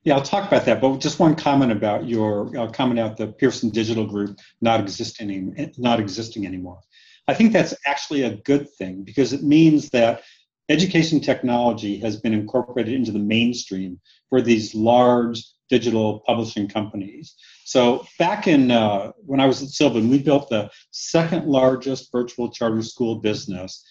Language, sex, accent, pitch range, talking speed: English, male, American, 110-135 Hz, 165 wpm